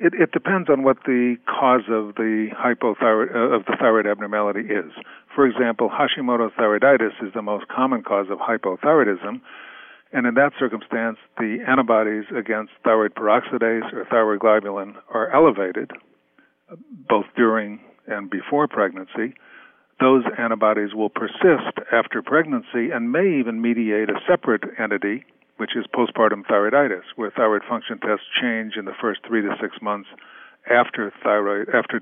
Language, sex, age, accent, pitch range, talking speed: English, male, 50-69, American, 105-120 Hz, 140 wpm